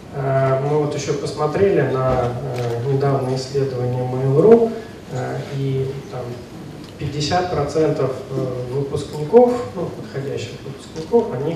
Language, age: Russian, 30-49